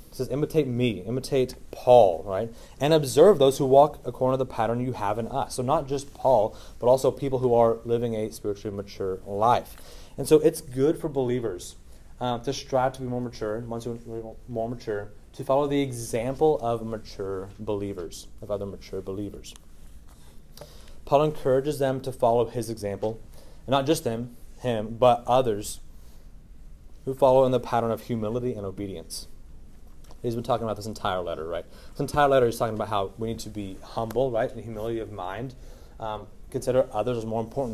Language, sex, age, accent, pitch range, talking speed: English, male, 30-49, American, 100-125 Hz, 185 wpm